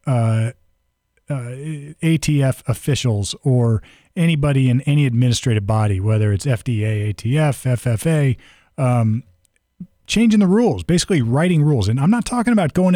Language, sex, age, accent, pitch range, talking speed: English, male, 40-59, American, 115-145 Hz, 130 wpm